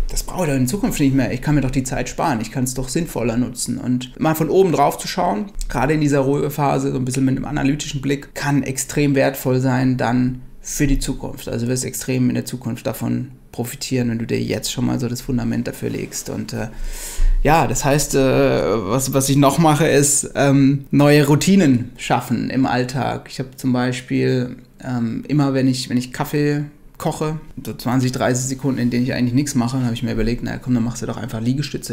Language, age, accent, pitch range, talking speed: German, 30-49, German, 125-145 Hz, 220 wpm